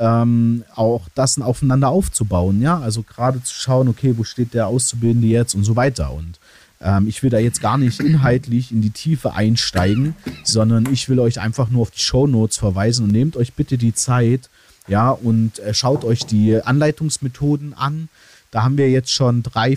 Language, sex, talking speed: German, male, 180 wpm